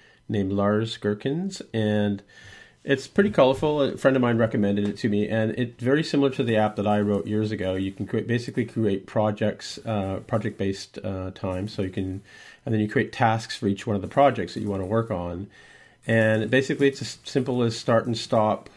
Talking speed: 210 wpm